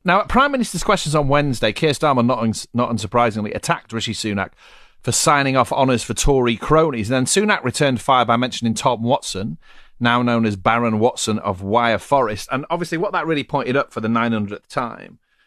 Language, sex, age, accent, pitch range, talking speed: English, male, 40-59, British, 110-140 Hz, 185 wpm